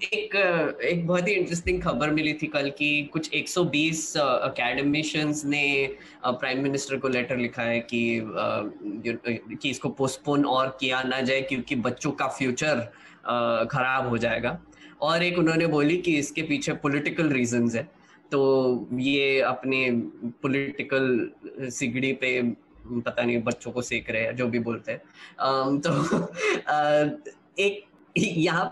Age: 20-39